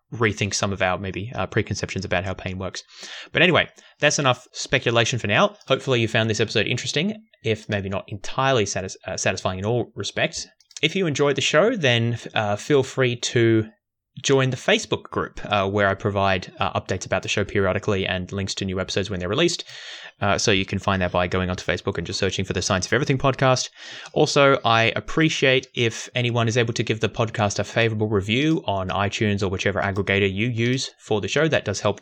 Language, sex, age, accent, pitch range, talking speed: English, male, 20-39, Australian, 100-130 Hz, 210 wpm